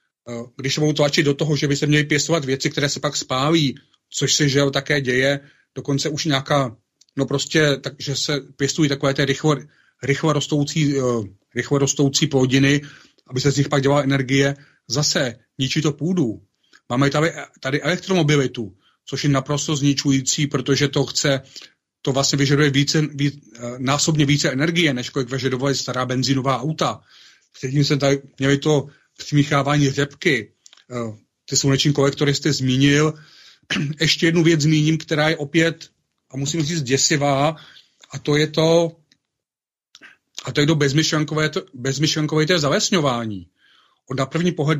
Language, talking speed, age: Slovak, 145 wpm, 30-49